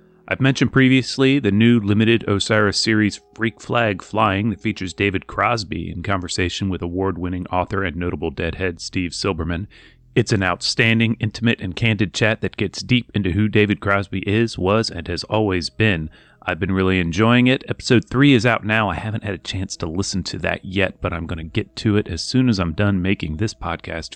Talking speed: 200 wpm